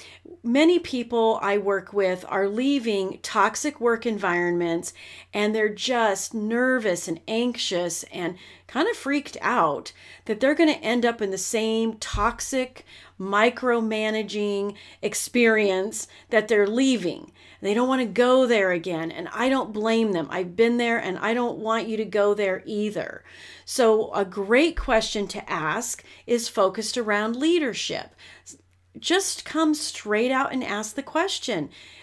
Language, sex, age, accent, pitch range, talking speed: English, female, 40-59, American, 200-255 Hz, 140 wpm